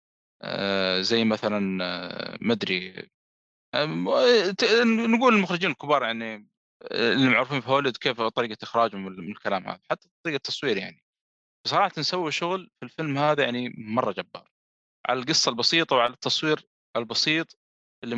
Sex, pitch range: male, 110-150 Hz